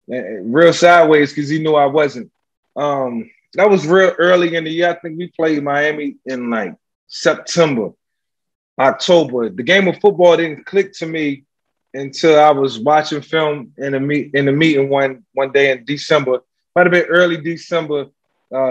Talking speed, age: 175 wpm, 20-39